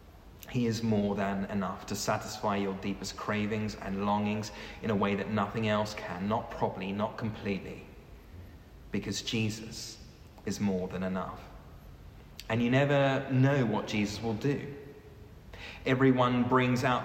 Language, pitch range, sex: English, 100-125 Hz, male